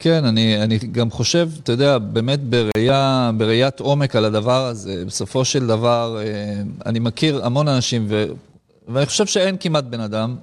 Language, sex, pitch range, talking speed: Hebrew, male, 115-155 Hz, 155 wpm